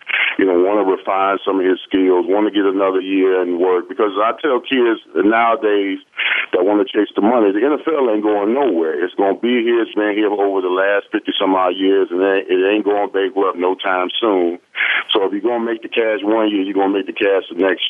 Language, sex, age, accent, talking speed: English, male, 40-59, American, 240 wpm